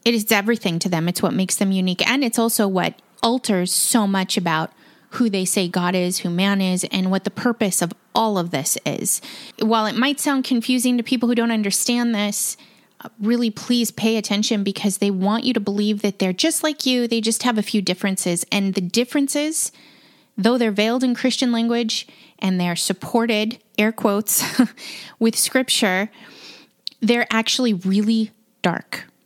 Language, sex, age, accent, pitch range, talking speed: English, female, 20-39, American, 195-235 Hz, 180 wpm